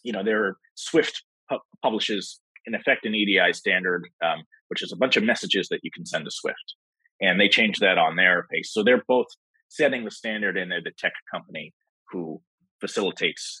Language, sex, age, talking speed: English, male, 30-49, 190 wpm